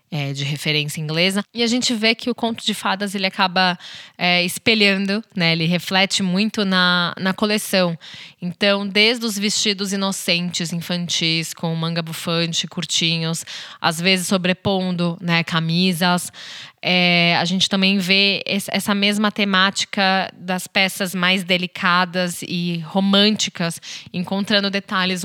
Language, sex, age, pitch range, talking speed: Portuguese, female, 10-29, 175-200 Hz, 125 wpm